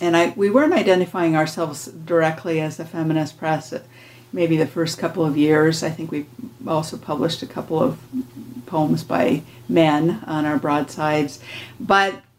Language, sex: English, female